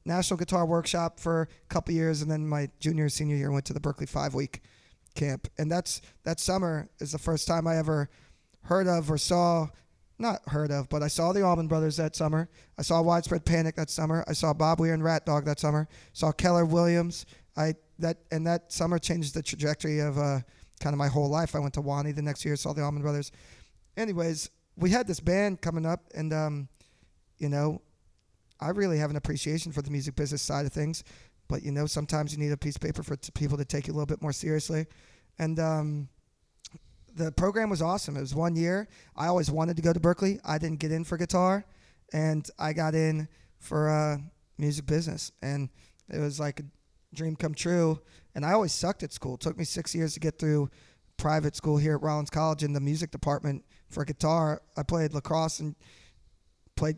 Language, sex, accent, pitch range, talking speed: English, male, American, 145-165 Hz, 215 wpm